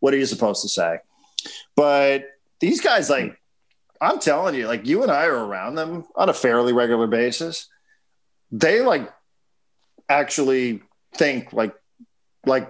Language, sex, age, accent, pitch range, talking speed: English, male, 40-59, American, 130-160 Hz, 145 wpm